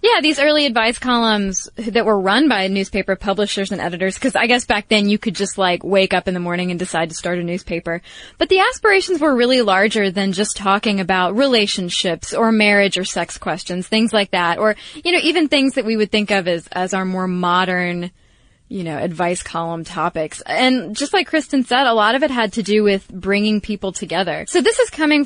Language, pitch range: English, 190-260 Hz